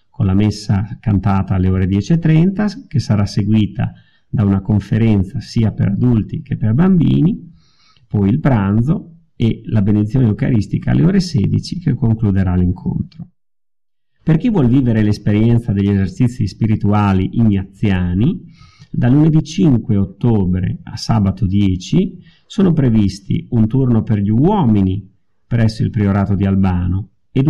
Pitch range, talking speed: 100-140 Hz, 130 wpm